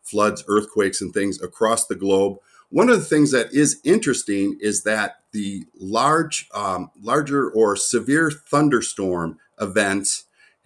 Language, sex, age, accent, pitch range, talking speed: English, male, 50-69, American, 100-120 Hz, 135 wpm